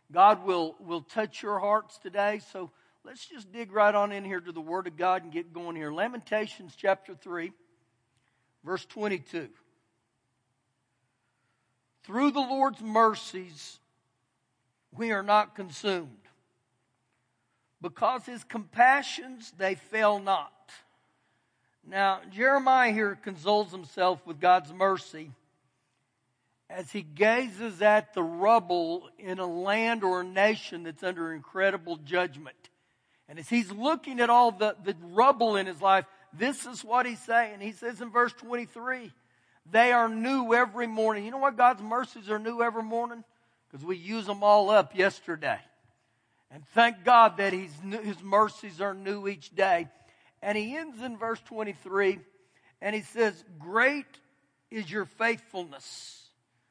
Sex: male